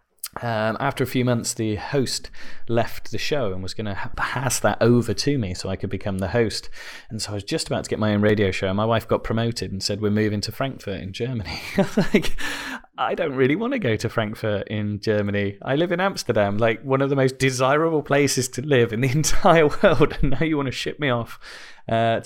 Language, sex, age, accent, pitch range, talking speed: English, male, 30-49, British, 95-120 Hz, 240 wpm